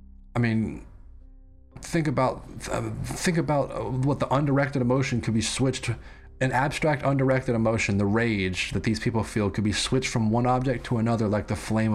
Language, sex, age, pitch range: English, male, 30-49, 95-125 Hz